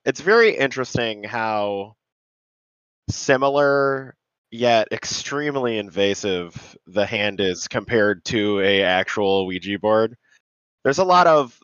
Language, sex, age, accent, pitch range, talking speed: English, male, 20-39, American, 100-120 Hz, 110 wpm